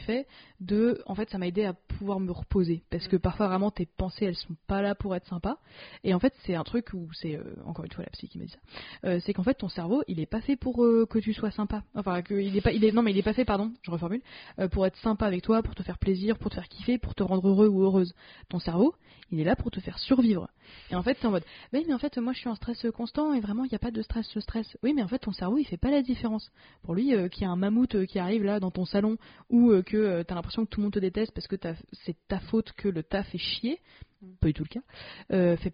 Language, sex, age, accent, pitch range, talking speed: French, female, 20-39, French, 185-230 Hz, 305 wpm